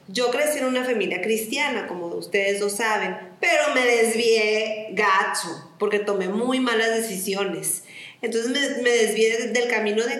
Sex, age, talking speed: female, 40-59, 155 wpm